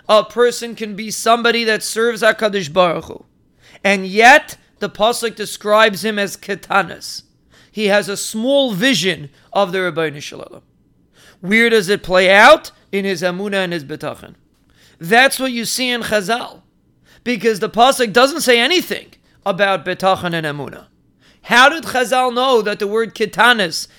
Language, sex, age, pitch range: English, male, 40-59, 190-240 Hz